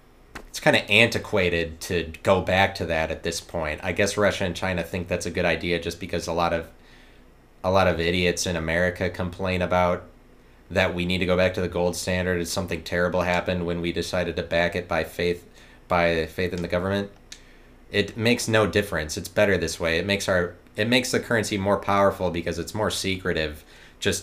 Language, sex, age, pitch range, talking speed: English, male, 30-49, 80-95 Hz, 210 wpm